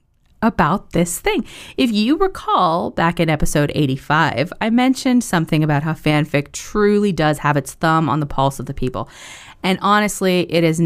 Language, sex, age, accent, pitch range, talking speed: English, female, 20-39, American, 145-200 Hz, 170 wpm